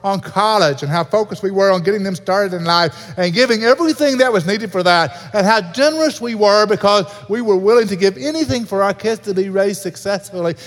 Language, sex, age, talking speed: English, male, 50-69, 225 wpm